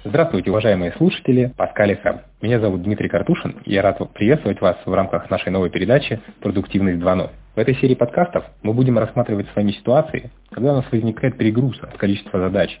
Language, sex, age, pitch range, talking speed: Russian, male, 30-49, 100-130 Hz, 175 wpm